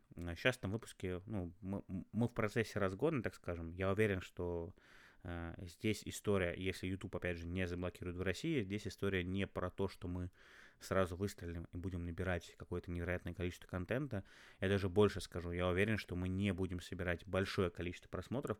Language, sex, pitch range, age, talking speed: Russian, male, 90-100 Hz, 20-39, 175 wpm